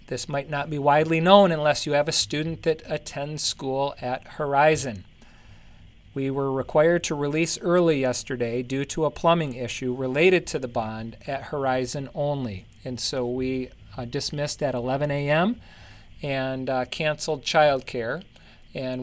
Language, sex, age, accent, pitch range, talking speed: English, male, 40-59, American, 125-155 Hz, 155 wpm